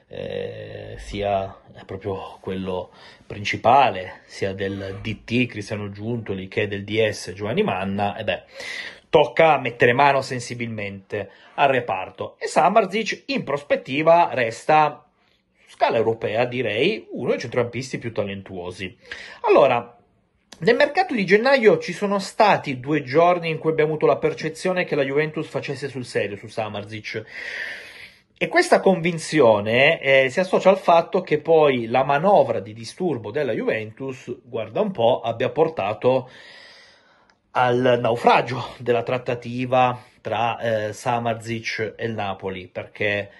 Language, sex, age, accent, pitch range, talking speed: Italian, male, 30-49, native, 105-155 Hz, 130 wpm